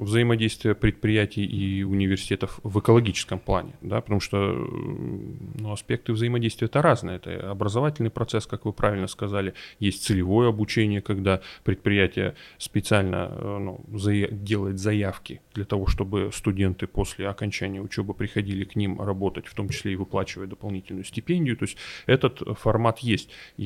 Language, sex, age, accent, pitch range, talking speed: Russian, male, 20-39, native, 95-110 Hz, 135 wpm